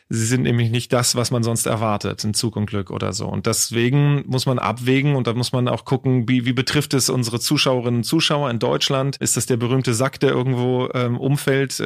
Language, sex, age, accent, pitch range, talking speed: German, male, 30-49, German, 120-140 Hz, 230 wpm